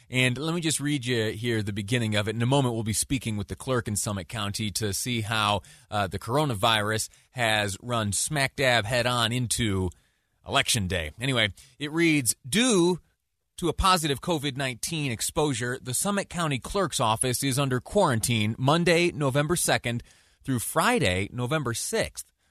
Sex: male